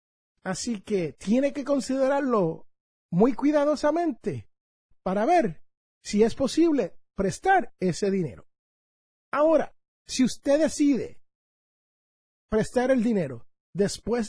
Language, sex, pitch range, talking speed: Spanish, male, 155-225 Hz, 95 wpm